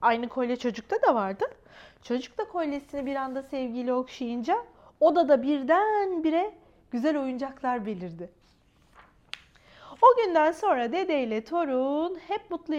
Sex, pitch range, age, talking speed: female, 235-315 Hz, 40-59, 120 wpm